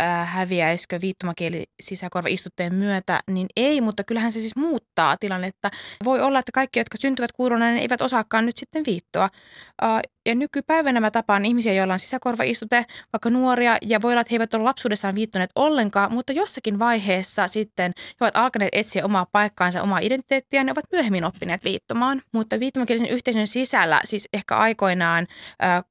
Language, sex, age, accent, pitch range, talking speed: Finnish, female, 20-39, native, 185-245 Hz, 165 wpm